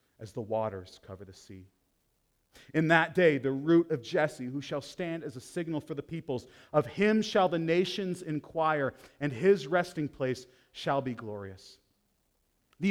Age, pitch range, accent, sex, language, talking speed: 30-49, 140-200 Hz, American, male, English, 165 wpm